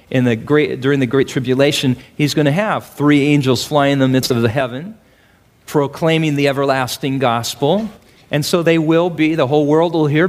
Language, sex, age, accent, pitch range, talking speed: English, male, 40-59, American, 140-205 Hz, 200 wpm